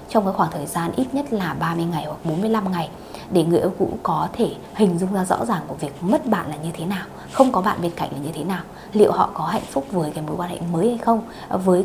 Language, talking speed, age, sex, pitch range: Vietnamese, 280 wpm, 20-39, female, 170-215 Hz